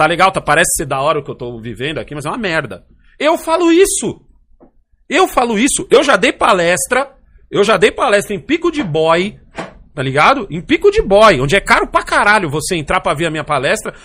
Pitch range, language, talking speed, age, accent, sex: 155-235 Hz, Portuguese, 225 wpm, 40-59, Brazilian, male